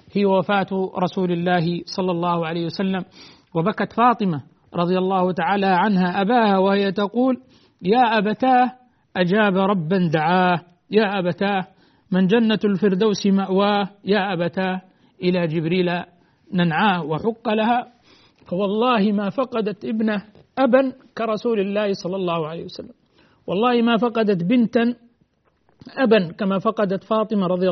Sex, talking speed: male, 120 wpm